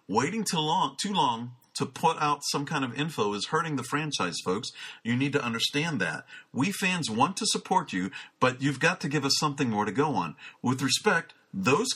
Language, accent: English, American